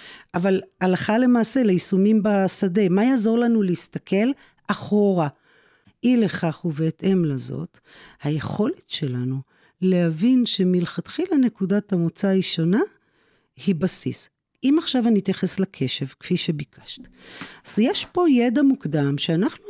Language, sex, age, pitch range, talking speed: Hebrew, female, 40-59, 170-245 Hz, 115 wpm